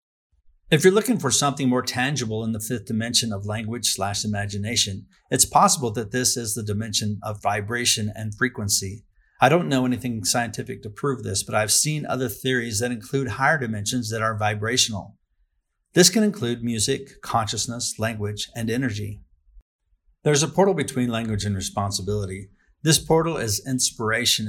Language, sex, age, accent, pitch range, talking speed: English, male, 50-69, American, 100-125 Hz, 160 wpm